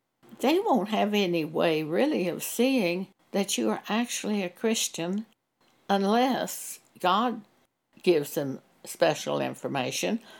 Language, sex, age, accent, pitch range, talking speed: English, female, 60-79, American, 175-235 Hz, 115 wpm